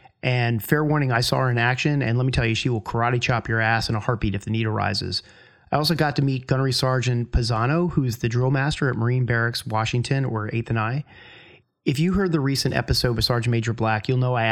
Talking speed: 245 wpm